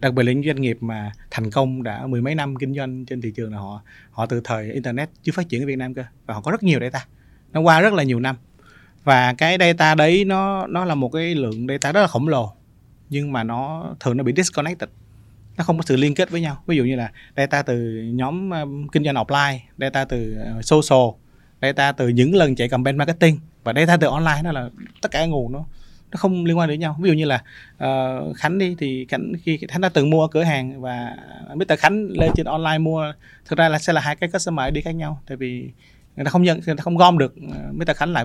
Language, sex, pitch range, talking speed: Vietnamese, male, 120-155 Hz, 255 wpm